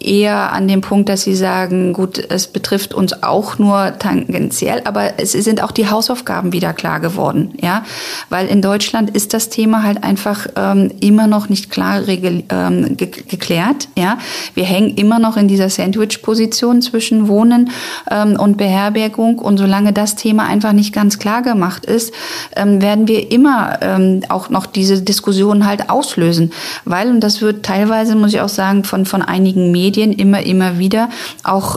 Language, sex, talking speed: German, female, 170 wpm